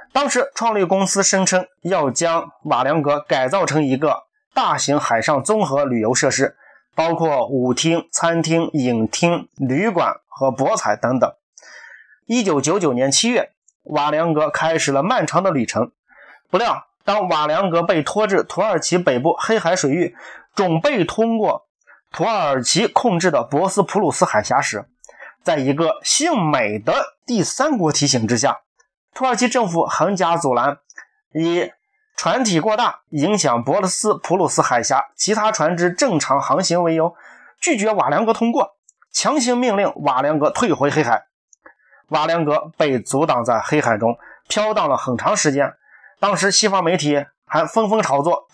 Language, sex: Chinese, male